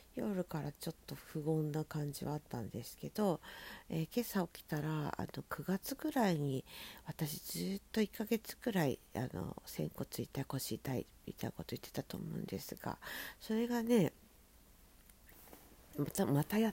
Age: 50-69